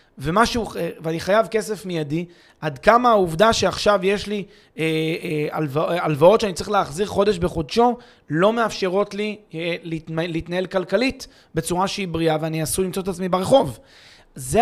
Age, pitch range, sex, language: 30-49, 160-205 Hz, male, Hebrew